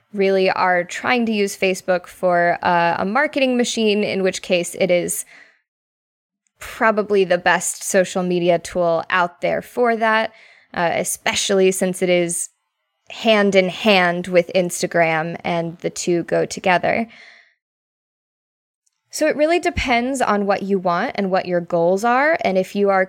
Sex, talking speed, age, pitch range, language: female, 150 wpm, 20-39, 175-215 Hz, English